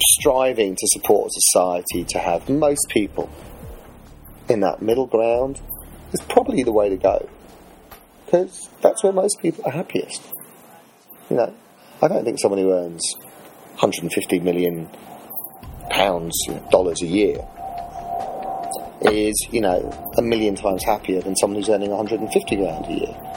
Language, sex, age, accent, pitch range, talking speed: English, male, 30-49, British, 100-150 Hz, 140 wpm